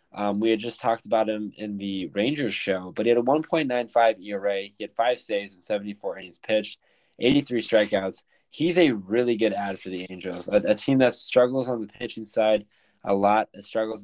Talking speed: 200 wpm